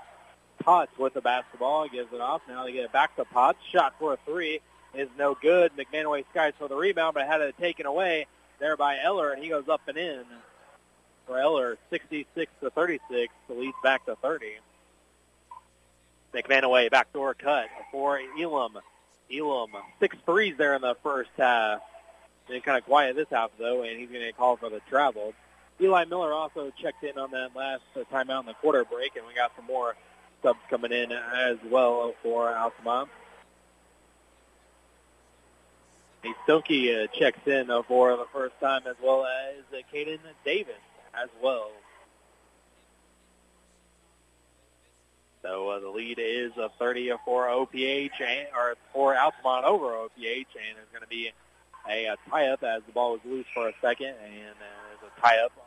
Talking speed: 170 wpm